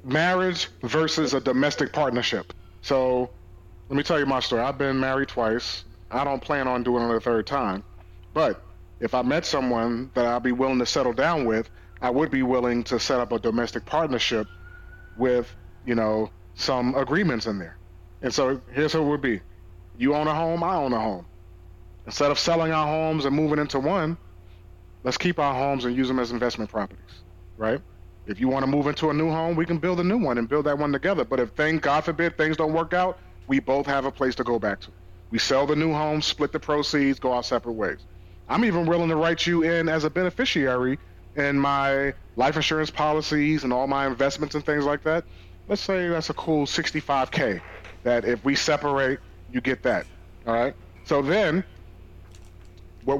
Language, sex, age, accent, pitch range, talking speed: English, male, 30-49, American, 105-150 Hz, 205 wpm